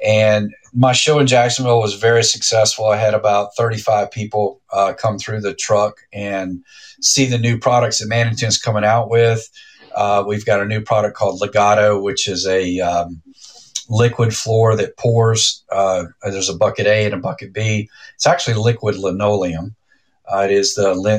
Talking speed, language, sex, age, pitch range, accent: 175 wpm, English, male, 50-69, 105-120 Hz, American